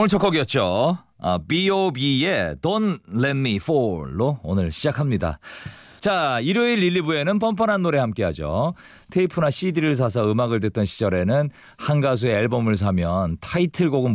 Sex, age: male, 40-59